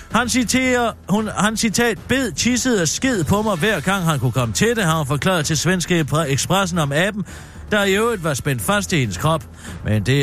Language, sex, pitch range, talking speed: Danish, male, 125-195 Hz, 225 wpm